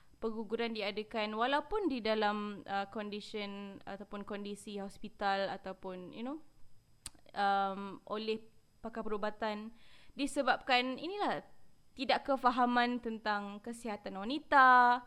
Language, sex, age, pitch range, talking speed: Malay, female, 20-39, 210-275 Hz, 95 wpm